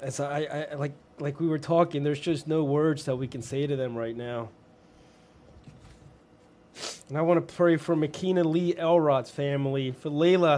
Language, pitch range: English, 140-175 Hz